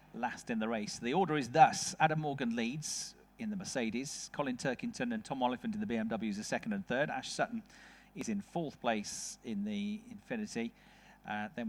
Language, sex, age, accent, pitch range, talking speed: English, male, 40-59, British, 145-220 Hz, 190 wpm